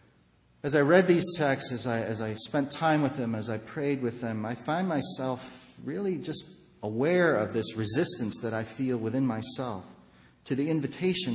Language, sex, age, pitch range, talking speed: English, male, 40-59, 110-145 Hz, 185 wpm